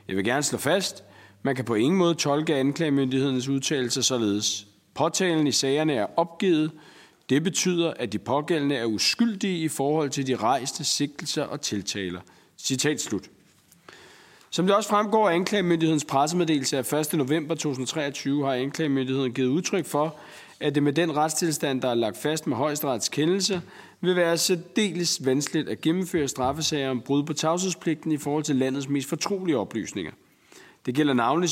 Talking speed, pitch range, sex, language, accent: 160 wpm, 130-165 Hz, male, Danish, native